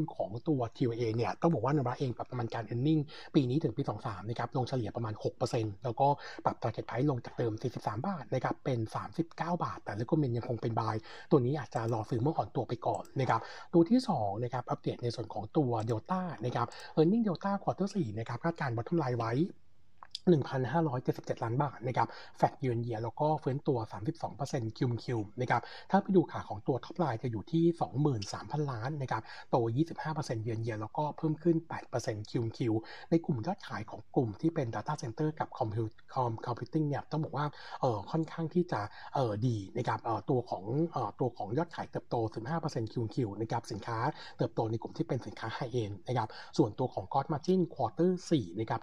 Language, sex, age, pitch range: Thai, male, 60-79, 115-155 Hz